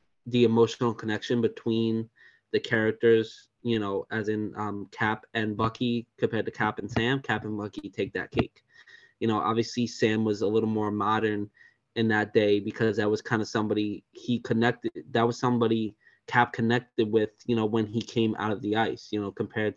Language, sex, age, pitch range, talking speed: English, male, 20-39, 105-120 Hz, 190 wpm